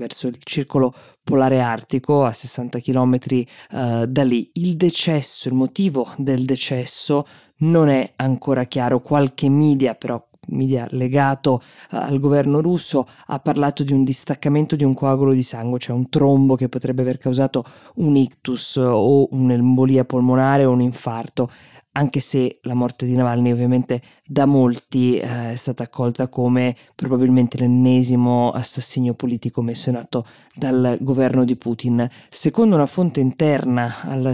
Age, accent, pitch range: 20-39, native, 125-140 Hz